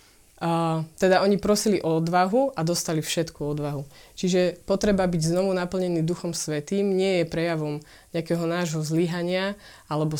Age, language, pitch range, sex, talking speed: 20-39, Slovak, 155-180 Hz, female, 140 wpm